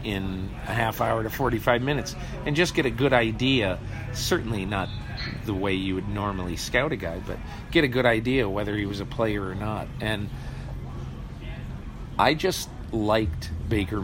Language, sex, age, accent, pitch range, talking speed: English, male, 50-69, American, 90-115 Hz, 170 wpm